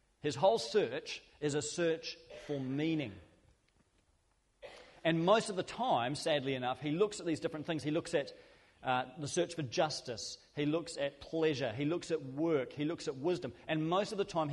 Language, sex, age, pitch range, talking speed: English, male, 40-59, 125-160 Hz, 190 wpm